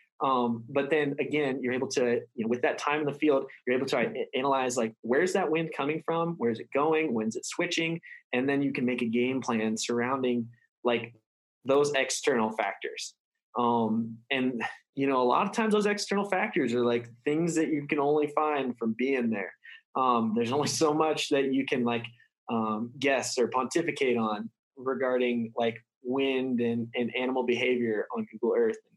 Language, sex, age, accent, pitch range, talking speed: English, male, 20-39, American, 120-155 Hz, 190 wpm